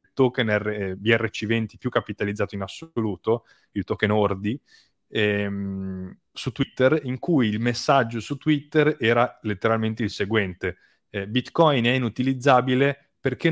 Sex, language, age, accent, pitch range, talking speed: male, Italian, 20-39, native, 105-130 Hz, 125 wpm